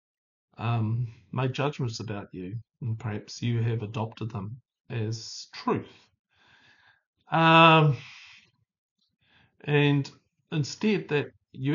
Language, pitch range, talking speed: English, 120-150 Hz, 90 wpm